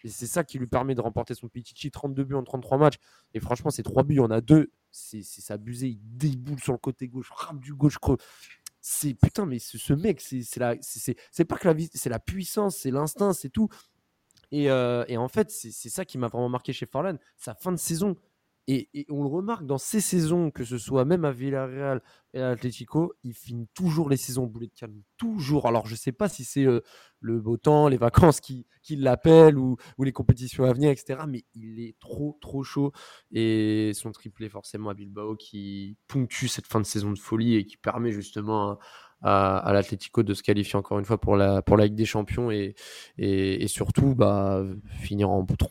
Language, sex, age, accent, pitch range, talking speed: French, male, 20-39, French, 110-140 Hz, 230 wpm